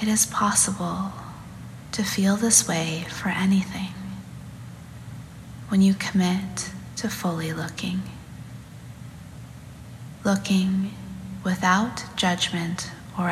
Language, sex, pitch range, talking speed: English, female, 155-200 Hz, 85 wpm